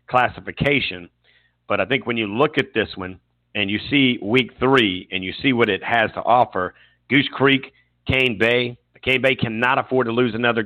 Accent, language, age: American, English, 50-69